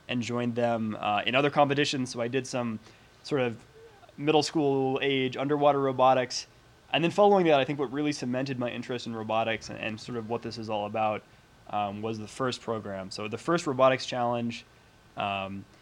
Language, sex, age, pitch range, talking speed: English, male, 20-39, 115-135 Hz, 195 wpm